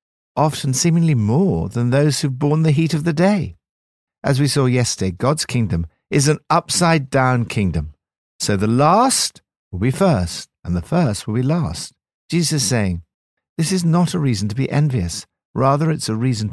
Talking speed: 180 wpm